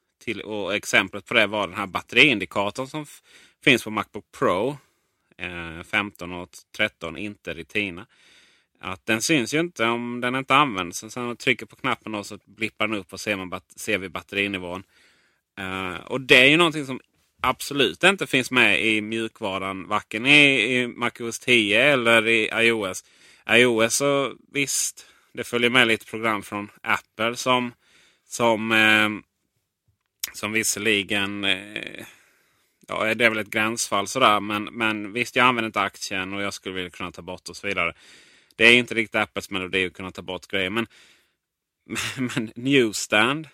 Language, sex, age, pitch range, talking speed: Swedish, male, 30-49, 100-120 Hz, 170 wpm